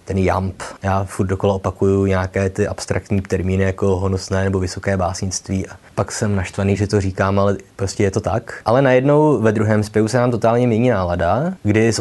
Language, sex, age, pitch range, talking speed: Czech, male, 20-39, 100-125 Hz, 195 wpm